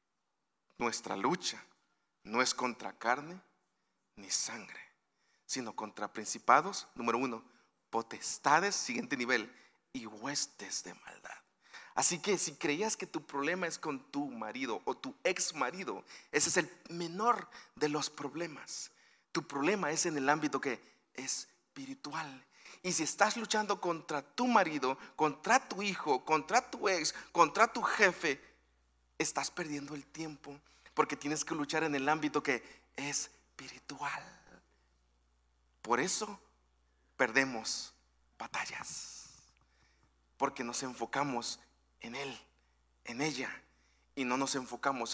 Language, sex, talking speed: Spanish, male, 130 wpm